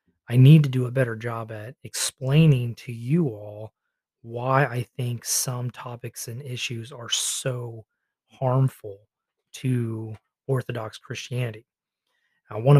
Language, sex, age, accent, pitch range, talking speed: English, male, 30-49, American, 115-130 Hz, 120 wpm